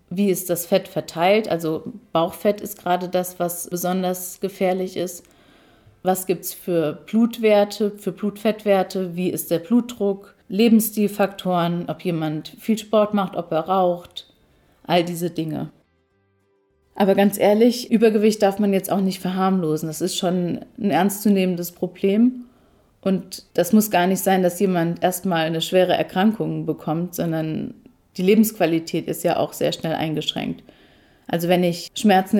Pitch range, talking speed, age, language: 165-200 Hz, 145 wpm, 30-49, German